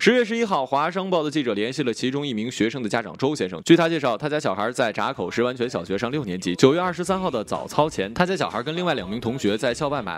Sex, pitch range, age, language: male, 130-190 Hz, 20-39, Chinese